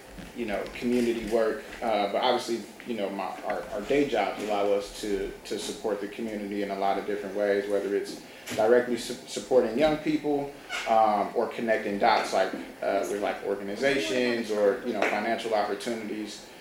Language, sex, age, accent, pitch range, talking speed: English, male, 30-49, American, 105-125 Hz, 175 wpm